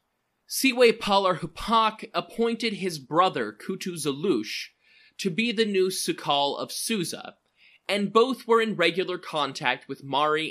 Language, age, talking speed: English, 20-39, 115 wpm